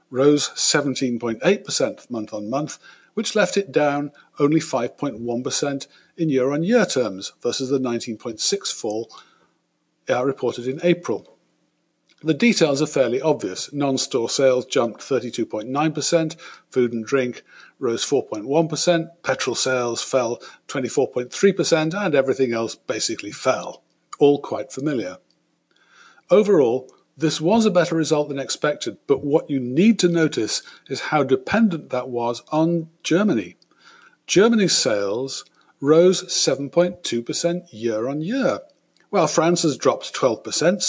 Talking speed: 115 wpm